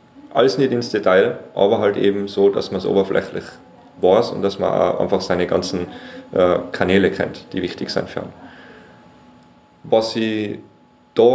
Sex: male